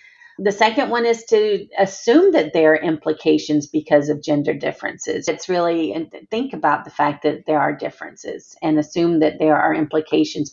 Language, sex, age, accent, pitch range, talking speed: English, female, 40-59, American, 150-175 Hz, 170 wpm